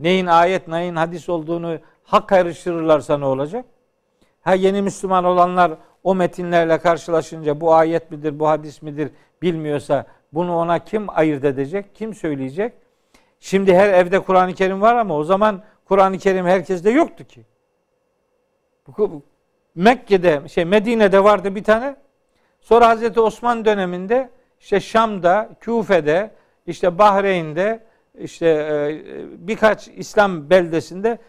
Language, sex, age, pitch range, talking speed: Turkish, male, 50-69, 170-220 Hz, 120 wpm